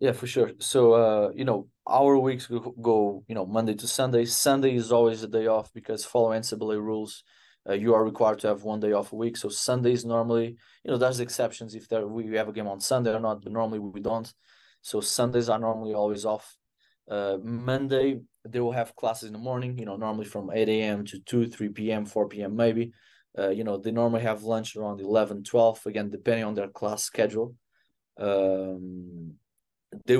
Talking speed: 205 wpm